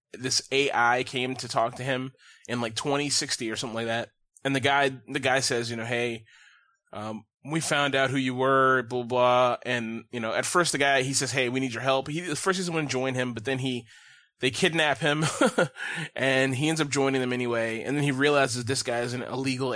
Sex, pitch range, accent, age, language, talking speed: male, 125-155 Hz, American, 20-39, English, 230 wpm